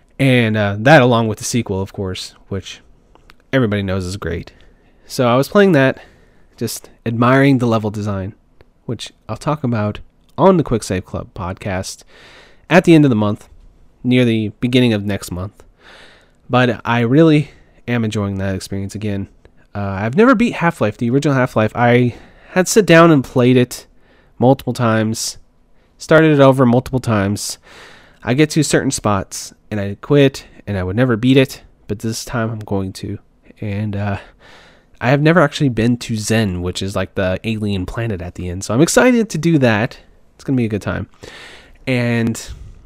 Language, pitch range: English, 100-130 Hz